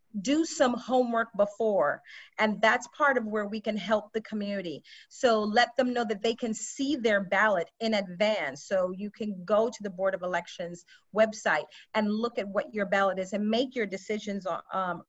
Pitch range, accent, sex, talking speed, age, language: 205-245 Hz, American, female, 190 wpm, 40-59, English